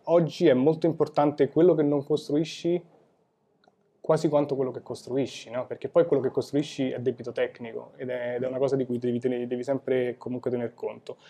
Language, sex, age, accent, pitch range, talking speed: Italian, male, 20-39, native, 125-150 Hz, 190 wpm